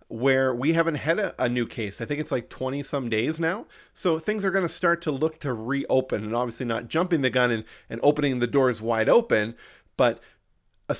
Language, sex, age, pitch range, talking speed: English, male, 40-59, 125-170 Hz, 215 wpm